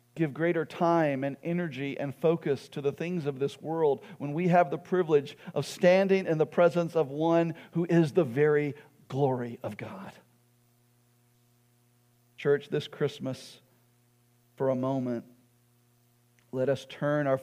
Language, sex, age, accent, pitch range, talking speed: English, male, 40-59, American, 120-140 Hz, 145 wpm